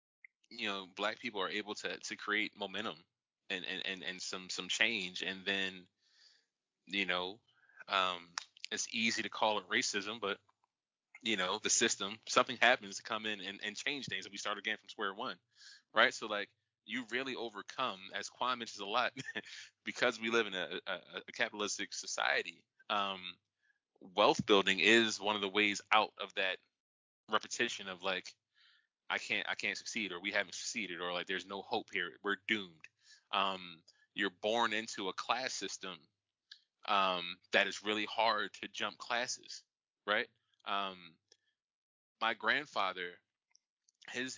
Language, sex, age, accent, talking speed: English, male, 20-39, American, 160 wpm